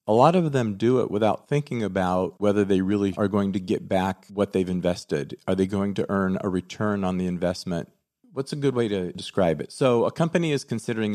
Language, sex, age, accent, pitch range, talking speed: Czech, male, 40-59, American, 90-110 Hz, 225 wpm